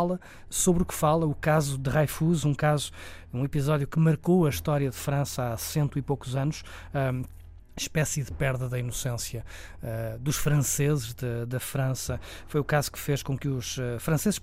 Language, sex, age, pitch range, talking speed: Portuguese, male, 20-39, 130-155 Hz, 180 wpm